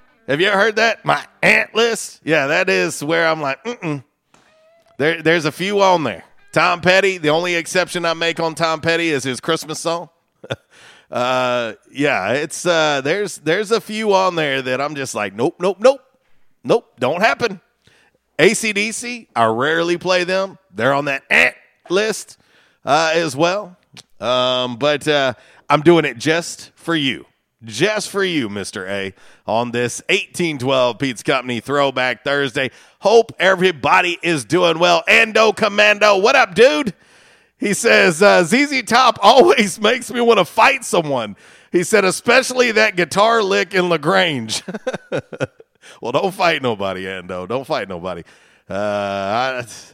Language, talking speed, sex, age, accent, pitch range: English, 155 wpm, male, 40-59, American, 135-200 Hz